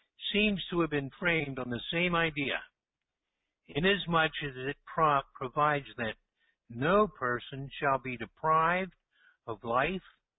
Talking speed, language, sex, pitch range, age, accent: 125 wpm, English, male, 130-170 Hz, 60-79, American